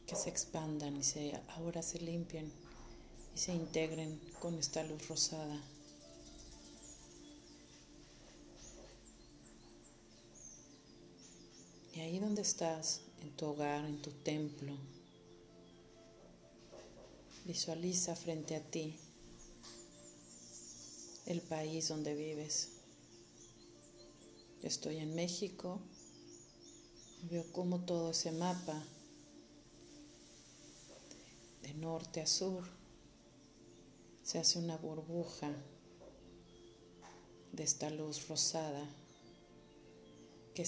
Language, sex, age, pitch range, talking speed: Spanish, female, 40-59, 115-165 Hz, 80 wpm